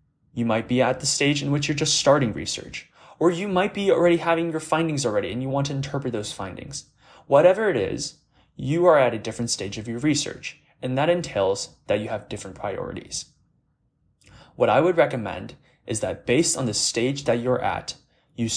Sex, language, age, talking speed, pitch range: male, English, 20-39, 200 wpm, 110-145 Hz